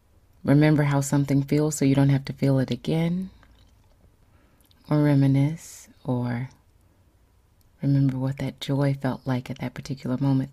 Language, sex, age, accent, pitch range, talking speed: English, female, 30-49, American, 100-135 Hz, 140 wpm